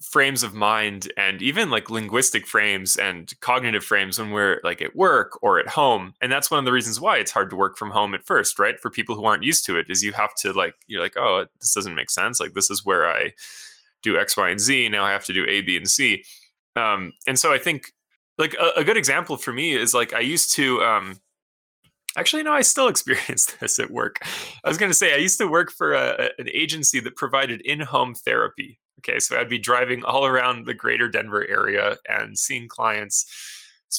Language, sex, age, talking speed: English, male, 10-29, 235 wpm